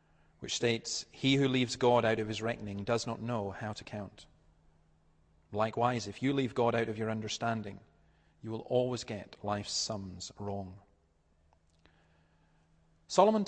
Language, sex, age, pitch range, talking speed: English, male, 40-59, 105-130 Hz, 145 wpm